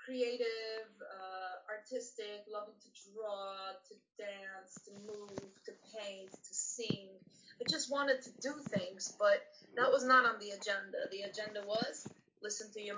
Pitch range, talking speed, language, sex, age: 210-300 Hz, 155 wpm, English, female, 30-49